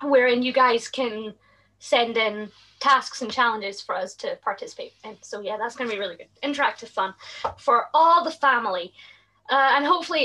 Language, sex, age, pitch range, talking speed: English, female, 20-39, 215-275 Hz, 180 wpm